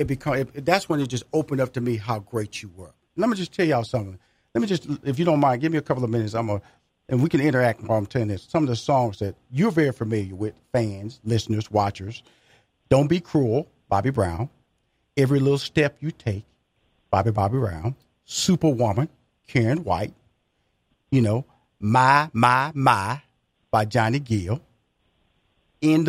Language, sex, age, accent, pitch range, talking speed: English, male, 50-69, American, 120-190 Hz, 190 wpm